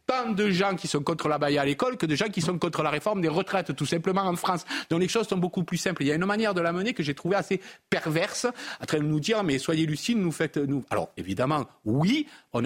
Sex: male